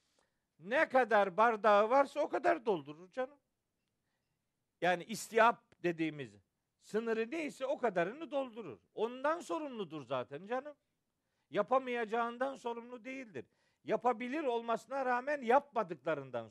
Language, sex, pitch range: Turkish, male, 150-235 Hz